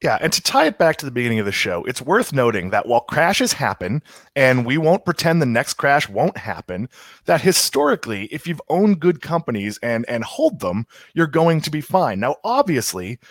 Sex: male